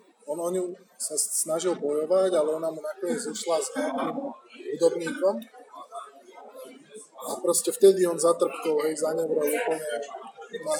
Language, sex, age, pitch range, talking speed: Slovak, male, 20-39, 165-230 Hz, 115 wpm